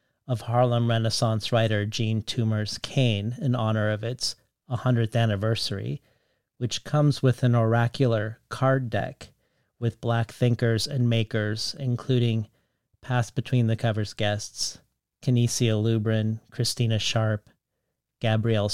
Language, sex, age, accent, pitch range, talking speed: English, male, 40-59, American, 110-125 Hz, 115 wpm